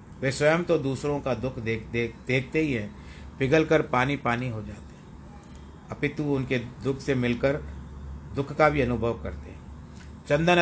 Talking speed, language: 165 wpm, Hindi